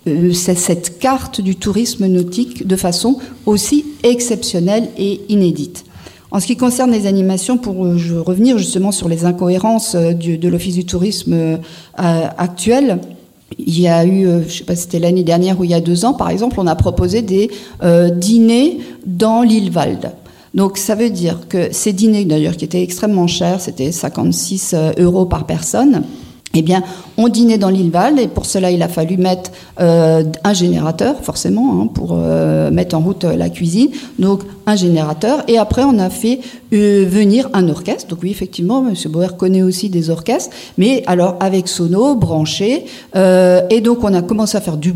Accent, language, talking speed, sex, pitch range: French, French, 185 wpm, female, 170-215 Hz